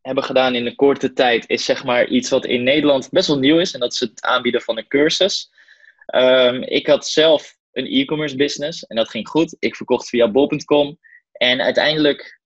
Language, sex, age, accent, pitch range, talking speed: Dutch, male, 20-39, Dutch, 125-165 Hz, 200 wpm